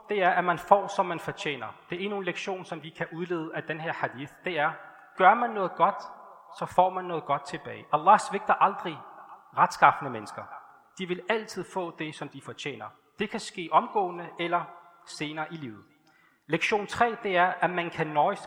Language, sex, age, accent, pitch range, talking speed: Danish, male, 30-49, native, 155-190 Hz, 200 wpm